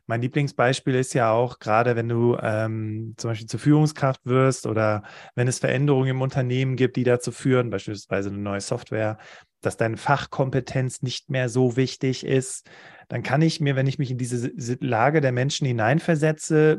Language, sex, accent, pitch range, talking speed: German, male, German, 125-150 Hz, 175 wpm